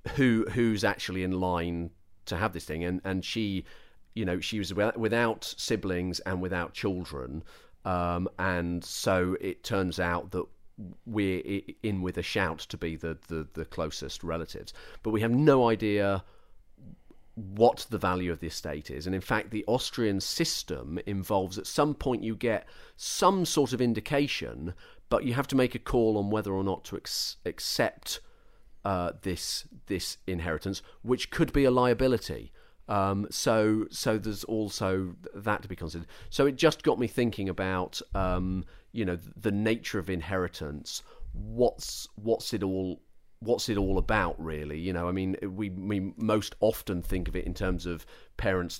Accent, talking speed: British, 170 wpm